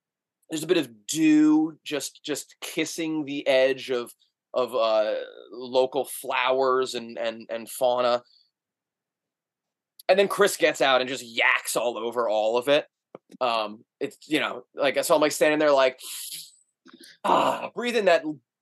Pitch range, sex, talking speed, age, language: 125-160 Hz, male, 160 wpm, 20-39, English